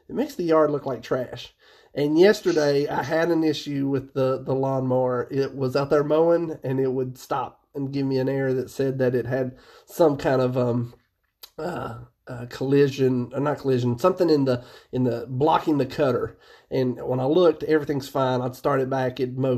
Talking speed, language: 200 wpm, English